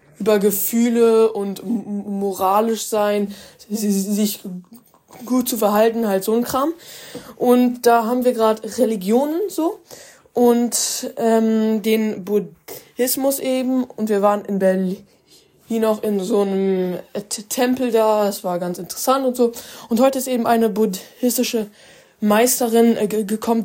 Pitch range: 205-240 Hz